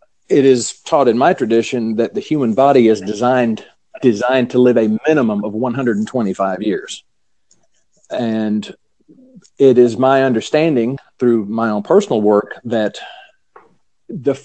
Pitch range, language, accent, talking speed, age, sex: 115-155 Hz, English, American, 135 wpm, 50-69, male